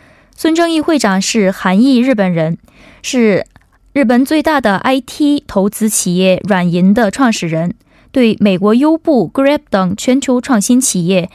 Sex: female